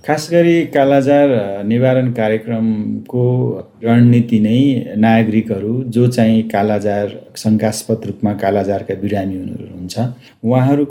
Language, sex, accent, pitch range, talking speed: English, male, Indian, 110-130 Hz, 105 wpm